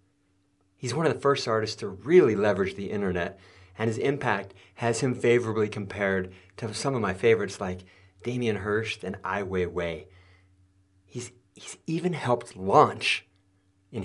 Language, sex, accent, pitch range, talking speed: English, male, American, 95-145 Hz, 150 wpm